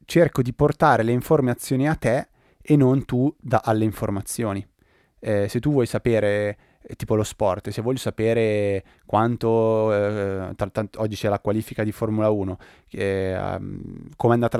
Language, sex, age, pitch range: Italian, male, 20-39, 95-115 Hz